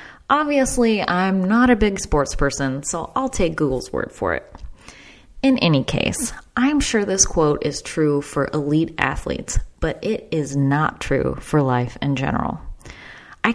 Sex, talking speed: female, 160 wpm